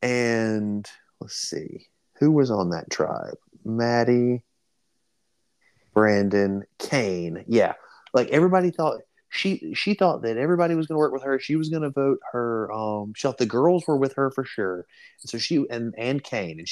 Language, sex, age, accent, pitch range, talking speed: English, male, 30-49, American, 115-175 Hz, 175 wpm